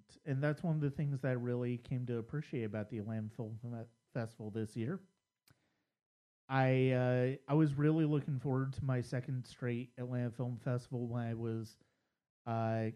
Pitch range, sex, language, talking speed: 115-135 Hz, male, English, 165 wpm